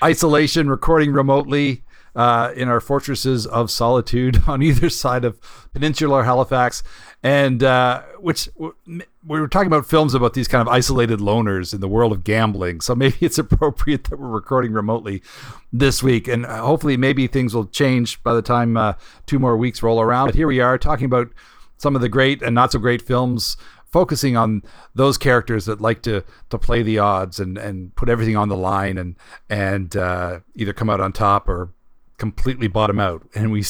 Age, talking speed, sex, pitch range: 50-69, 190 wpm, male, 110-140 Hz